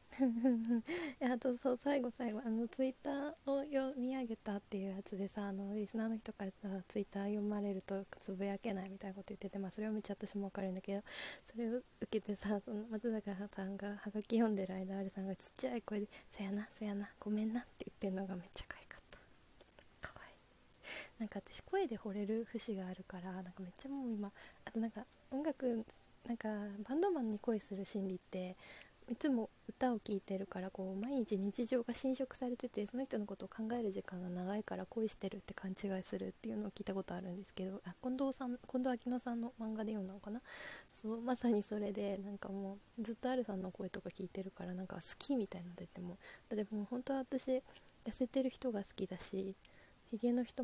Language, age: Japanese, 20-39